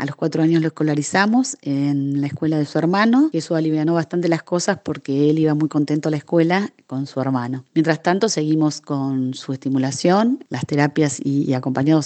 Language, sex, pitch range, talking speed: Spanish, female, 145-165 Hz, 195 wpm